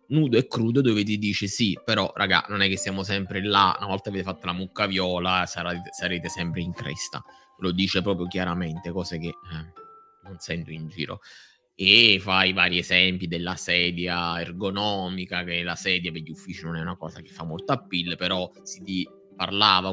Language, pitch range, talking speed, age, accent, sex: Italian, 90-105 Hz, 185 wpm, 20-39, native, male